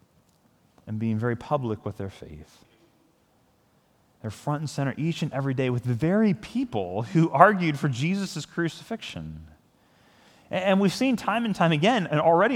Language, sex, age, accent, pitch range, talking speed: English, male, 30-49, American, 135-195 Hz, 160 wpm